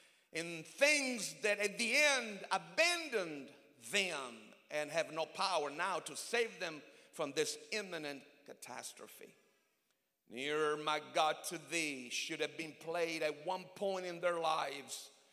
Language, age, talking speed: English, 50-69, 135 wpm